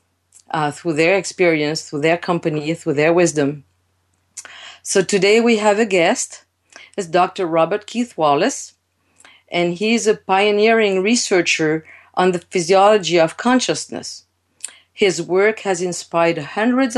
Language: English